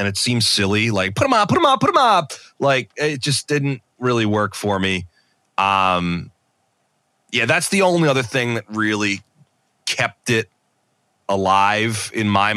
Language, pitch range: English, 90-125 Hz